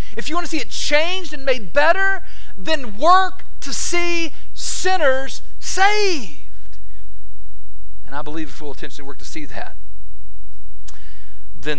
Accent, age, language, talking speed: American, 40-59, English, 135 wpm